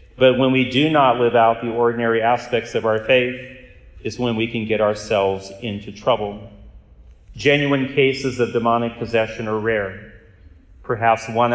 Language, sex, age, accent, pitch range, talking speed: English, male, 40-59, American, 110-125 Hz, 155 wpm